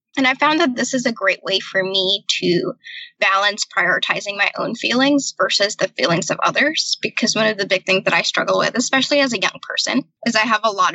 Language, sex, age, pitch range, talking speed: English, female, 10-29, 200-265 Hz, 230 wpm